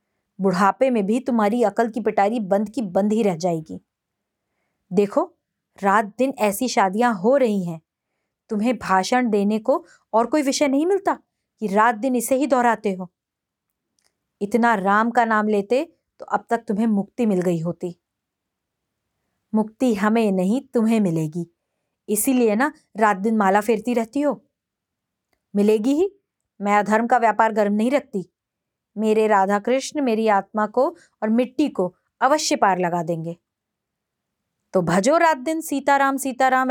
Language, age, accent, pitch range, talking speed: Hindi, 20-39, native, 200-255 Hz, 150 wpm